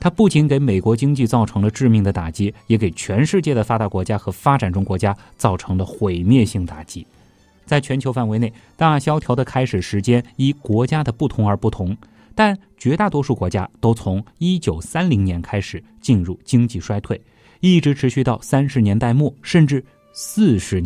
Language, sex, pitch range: Chinese, male, 105-145 Hz